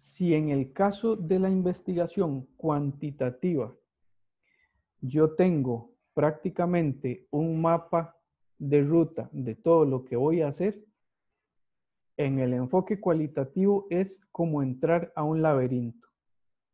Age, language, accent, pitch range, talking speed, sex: 50-69, Spanish, Colombian, 135-185 Hz, 115 wpm, male